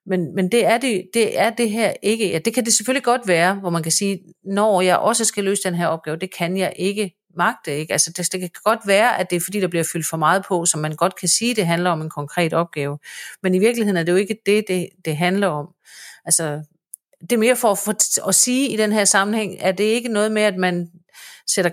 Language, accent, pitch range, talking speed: Danish, native, 170-215 Hz, 260 wpm